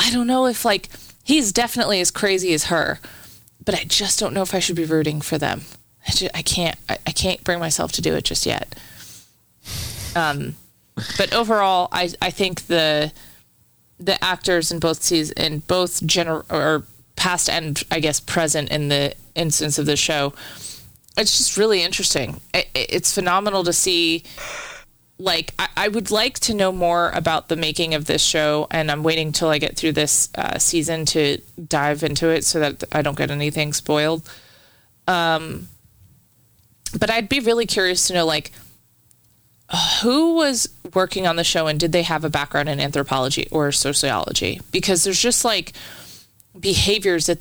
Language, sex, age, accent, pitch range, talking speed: English, female, 30-49, American, 150-190 Hz, 175 wpm